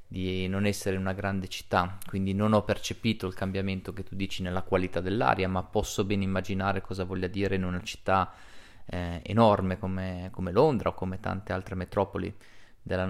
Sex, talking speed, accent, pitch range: male, 180 wpm, native, 95-105 Hz